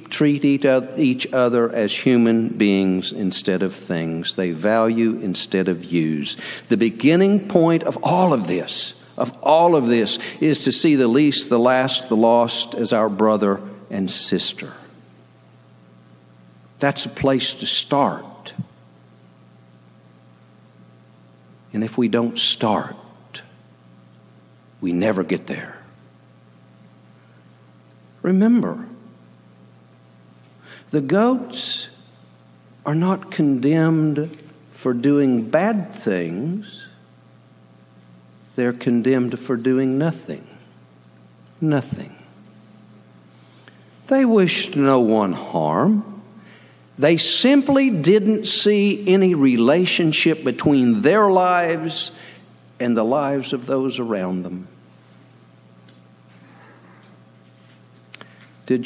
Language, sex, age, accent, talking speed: English, male, 50-69, American, 95 wpm